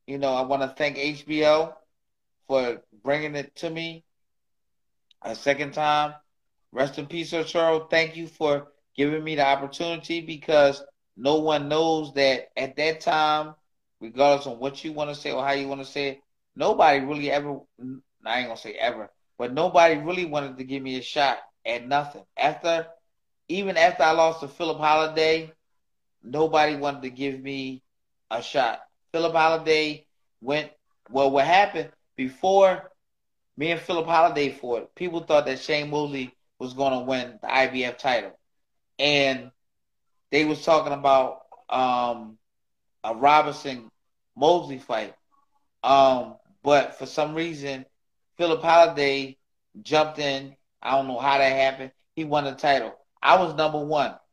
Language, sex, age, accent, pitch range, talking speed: English, male, 30-49, American, 135-160 Hz, 155 wpm